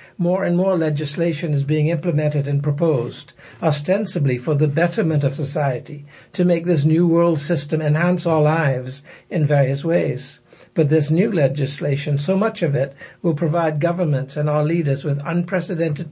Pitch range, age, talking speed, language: 140-170 Hz, 60-79, 160 wpm, English